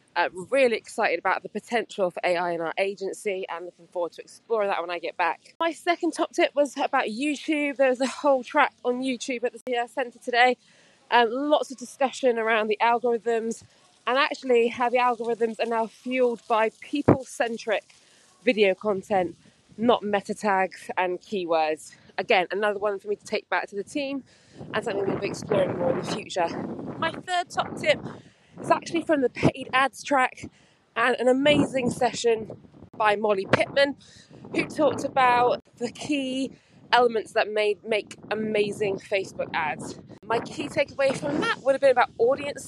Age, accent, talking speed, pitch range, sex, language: 20-39, British, 175 wpm, 210-275 Hz, female, English